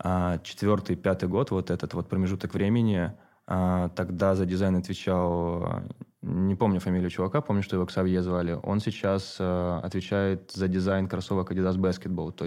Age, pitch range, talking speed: 20-39, 90-100 Hz, 140 wpm